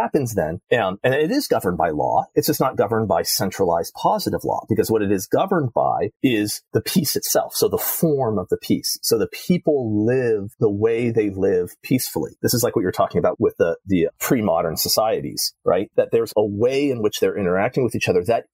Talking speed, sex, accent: 215 wpm, male, American